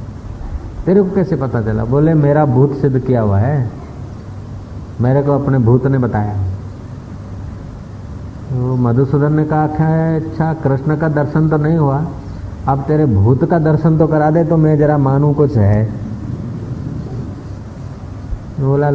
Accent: native